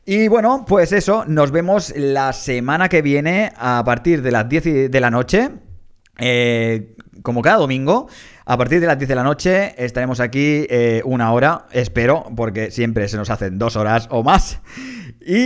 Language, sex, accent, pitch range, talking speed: Spanish, male, Spanish, 125-160 Hz, 180 wpm